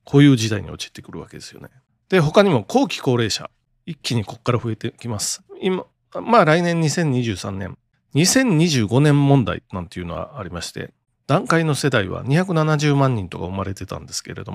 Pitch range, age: 115-170 Hz, 40-59